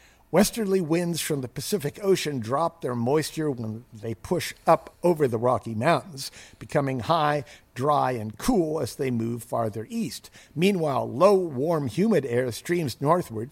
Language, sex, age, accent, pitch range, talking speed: English, male, 50-69, American, 115-165 Hz, 150 wpm